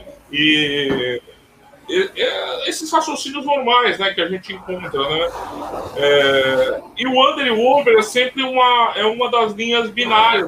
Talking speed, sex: 150 wpm, male